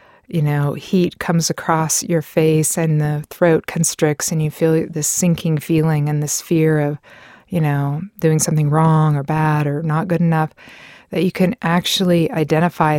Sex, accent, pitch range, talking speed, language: female, American, 150-180 Hz, 170 wpm, English